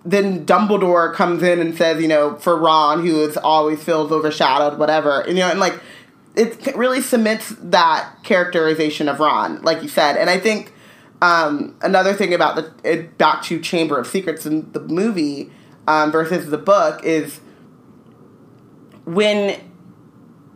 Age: 20-39